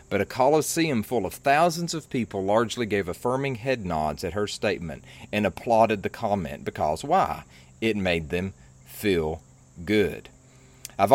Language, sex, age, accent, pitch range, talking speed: English, male, 40-59, American, 95-120 Hz, 150 wpm